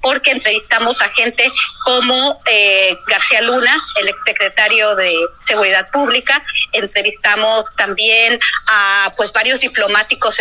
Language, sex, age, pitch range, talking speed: Spanish, female, 30-49, 200-270 Hz, 110 wpm